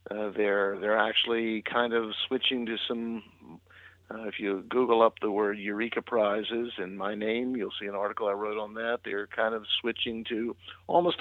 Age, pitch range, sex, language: 50-69, 105-130 Hz, male, English